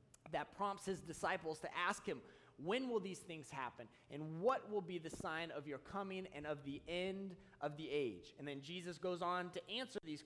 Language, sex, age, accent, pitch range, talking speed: English, male, 30-49, American, 150-195 Hz, 210 wpm